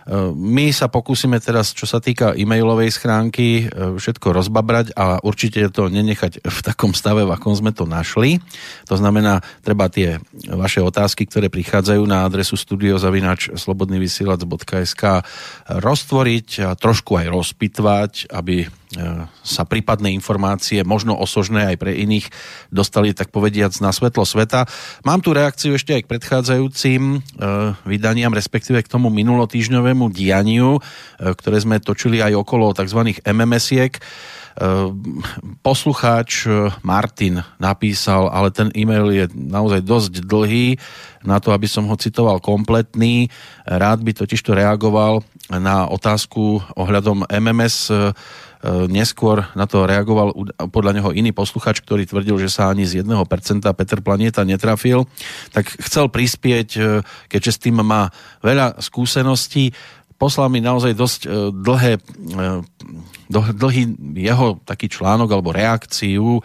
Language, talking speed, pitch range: Slovak, 125 wpm, 95-115 Hz